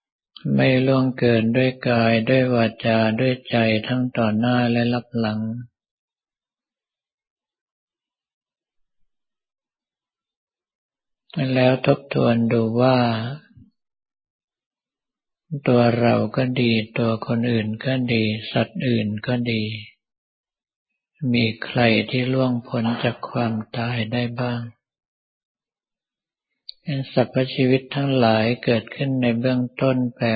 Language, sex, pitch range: Thai, male, 115-130 Hz